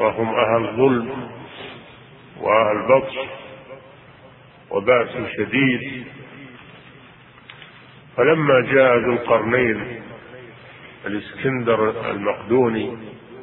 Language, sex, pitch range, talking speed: Arabic, male, 115-135 Hz, 60 wpm